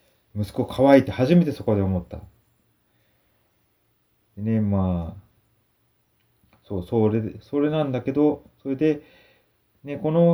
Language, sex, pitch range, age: Japanese, male, 95-145 Hz, 30-49